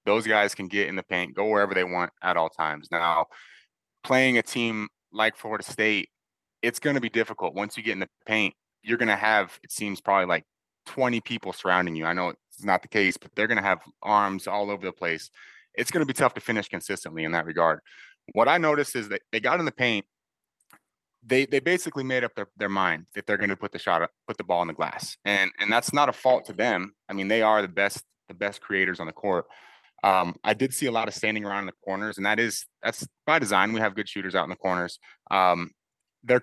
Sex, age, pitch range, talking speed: male, 20-39, 95-115 Hz, 250 wpm